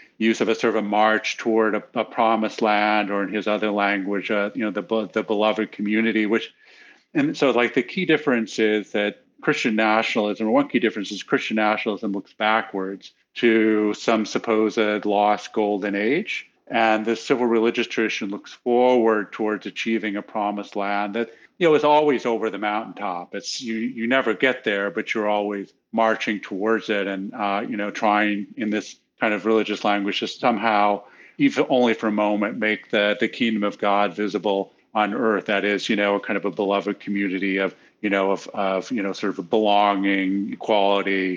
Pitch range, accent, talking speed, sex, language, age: 100-110 Hz, American, 190 wpm, male, English, 50-69